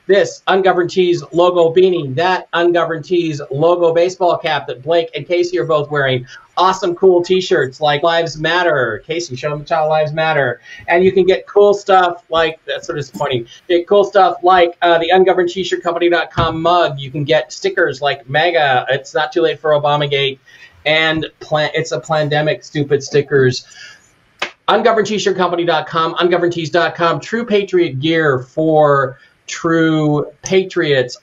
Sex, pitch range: male, 145-175 Hz